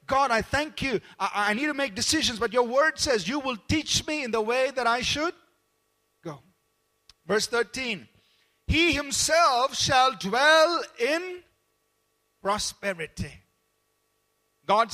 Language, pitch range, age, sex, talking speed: English, 190-295 Hz, 50-69, male, 135 wpm